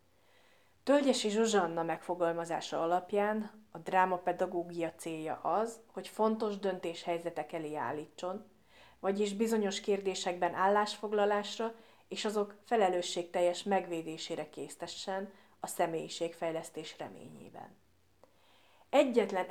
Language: Hungarian